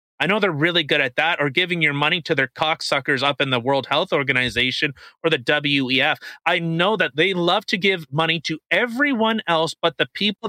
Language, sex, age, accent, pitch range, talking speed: English, male, 30-49, American, 140-210 Hz, 210 wpm